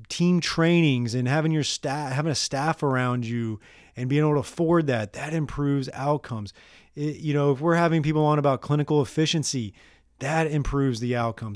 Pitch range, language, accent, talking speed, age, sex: 125-150 Hz, English, American, 180 wpm, 30-49, male